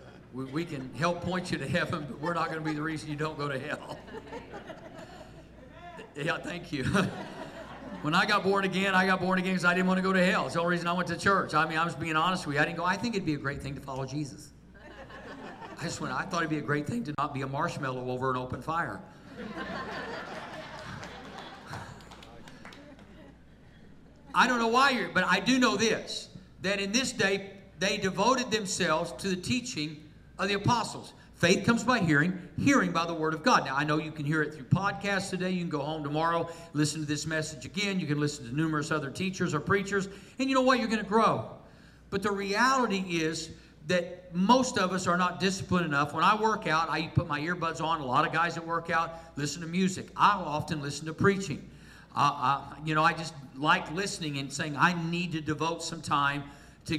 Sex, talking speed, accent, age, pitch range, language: male, 220 wpm, American, 50-69, 150-185 Hz, English